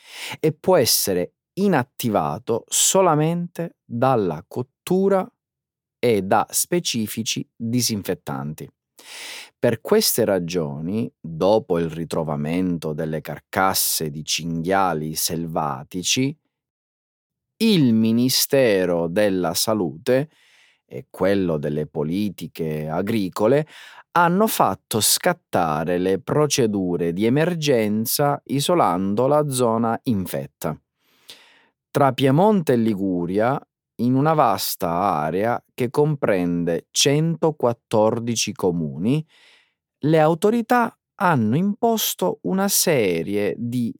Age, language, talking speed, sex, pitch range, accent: 30-49, Italian, 85 wpm, male, 90-155 Hz, native